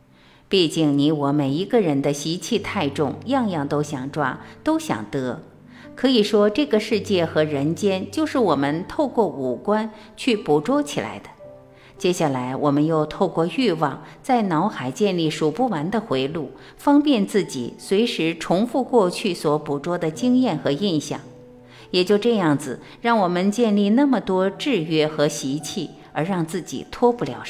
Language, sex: Chinese, female